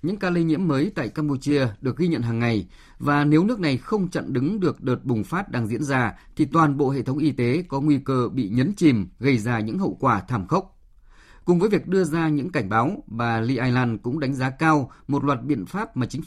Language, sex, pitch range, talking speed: Vietnamese, male, 120-160 Hz, 245 wpm